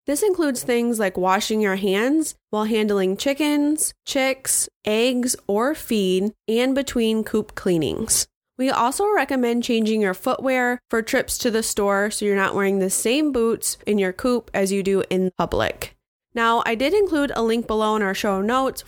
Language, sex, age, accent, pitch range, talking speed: English, female, 20-39, American, 195-255 Hz, 175 wpm